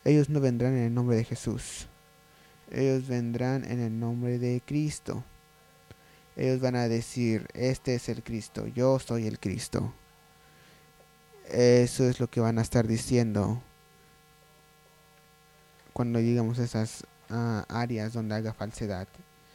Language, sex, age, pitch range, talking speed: English, male, 20-39, 115-150 Hz, 135 wpm